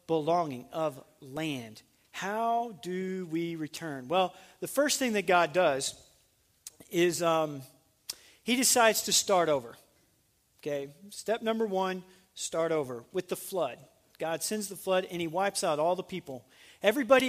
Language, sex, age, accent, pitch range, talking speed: English, male, 40-59, American, 150-205 Hz, 145 wpm